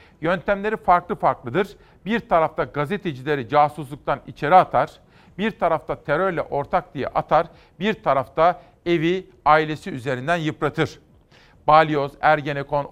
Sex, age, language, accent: male, 50-69, Turkish, native